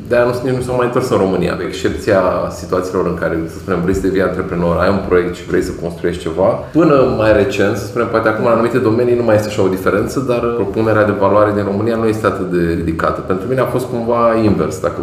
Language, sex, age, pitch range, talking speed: Romanian, male, 30-49, 90-110 Hz, 245 wpm